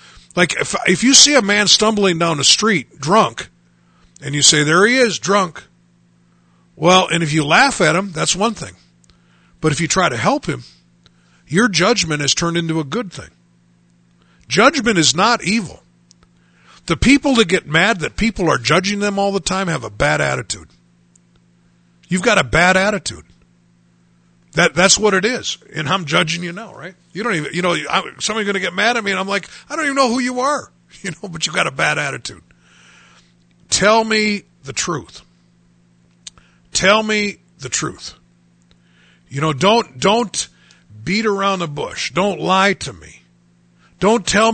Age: 50-69